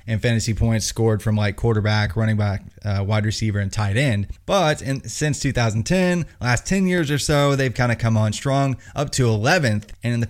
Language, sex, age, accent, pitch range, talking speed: English, male, 20-39, American, 110-125 Hz, 210 wpm